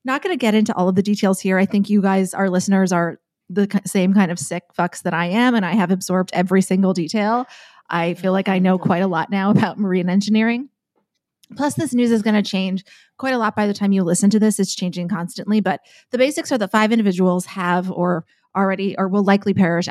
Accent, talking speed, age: American, 240 wpm, 20-39